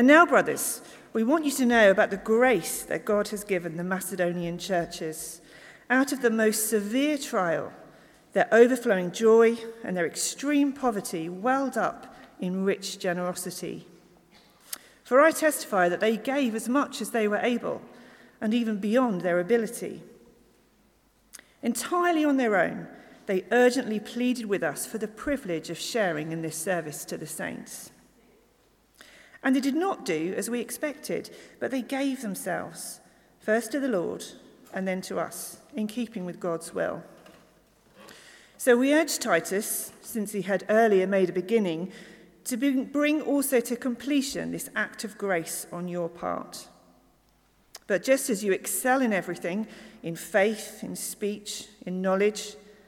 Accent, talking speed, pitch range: British, 150 wpm, 185-250 Hz